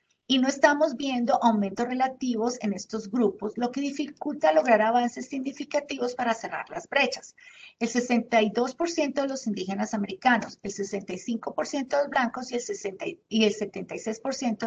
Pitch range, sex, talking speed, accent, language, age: 215-265 Hz, female, 145 wpm, Colombian, English, 40-59